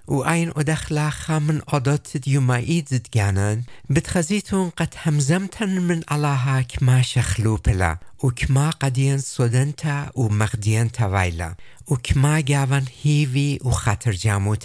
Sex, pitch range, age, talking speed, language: male, 115-155 Hz, 60-79, 120 wpm, English